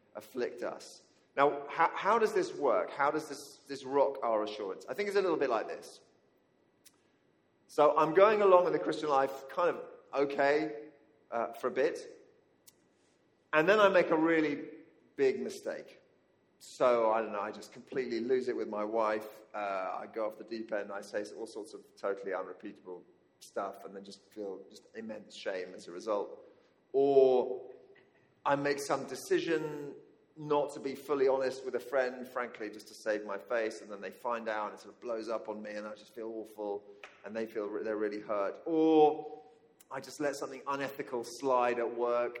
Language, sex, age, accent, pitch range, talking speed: English, male, 40-59, British, 115-180 Hz, 190 wpm